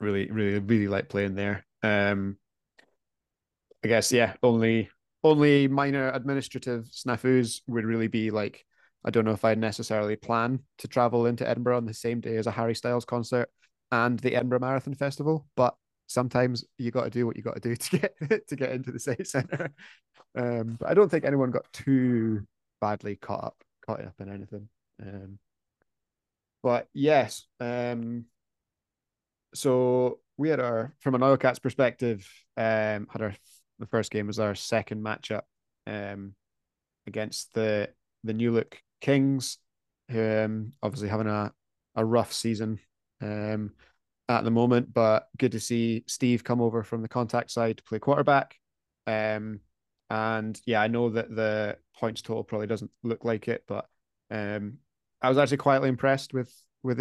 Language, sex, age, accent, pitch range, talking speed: English, male, 20-39, British, 110-125 Hz, 165 wpm